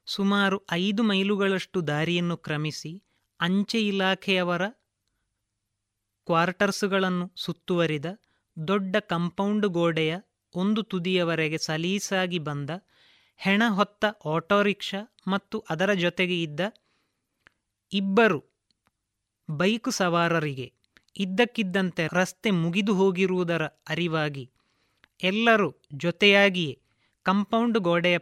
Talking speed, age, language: 75 wpm, 30-49, Kannada